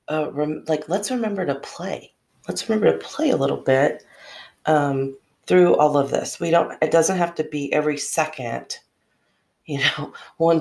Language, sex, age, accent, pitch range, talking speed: English, female, 40-59, American, 140-170 Hz, 170 wpm